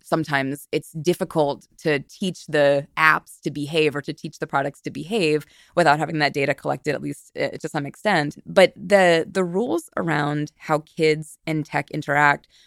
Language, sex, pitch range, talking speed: English, female, 145-180 Hz, 170 wpm